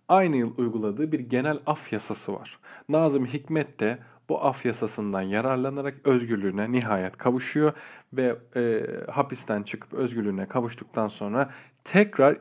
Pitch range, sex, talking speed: 115-150 Hz, male, 125 wpm